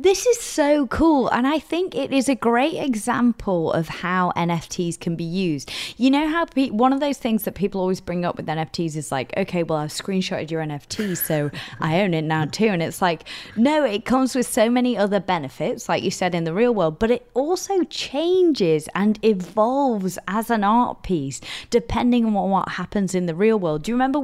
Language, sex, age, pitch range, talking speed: English, female, 20-39, 175-230 Hz, 210 wpm